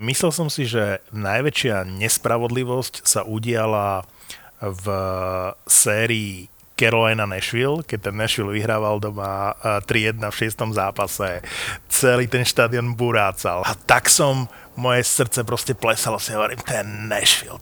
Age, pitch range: 30-49, 110-135 Hz